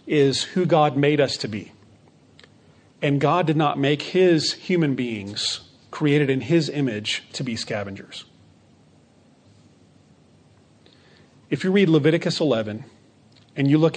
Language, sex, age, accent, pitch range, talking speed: English, male, 40-59, American, 125-155 Hz, 130 wpm